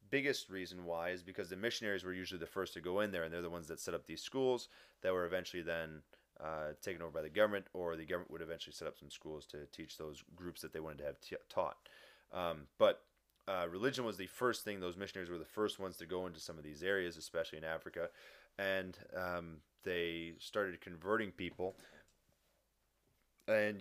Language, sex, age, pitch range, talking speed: English, male, 30-49, 80-95 Hz, 210 wpm